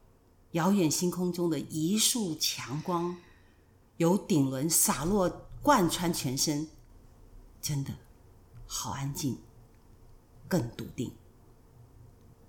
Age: 50-69